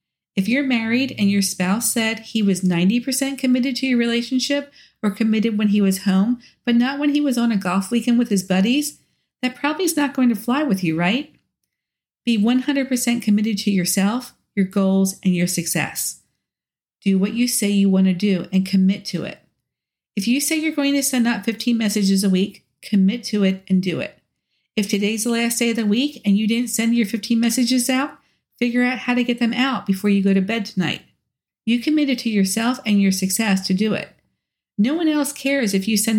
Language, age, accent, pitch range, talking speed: English, 50-69, American, 195-250 Hz, 210 wpm